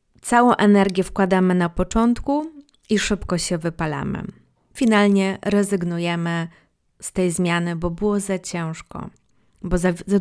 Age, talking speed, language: 20-39, 125 wpm, Polish